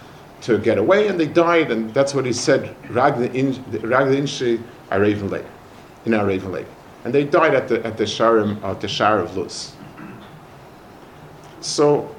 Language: English